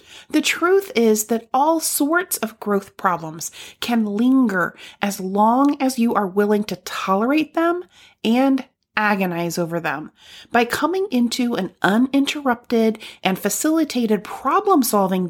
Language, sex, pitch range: English, female, 200-285 Hz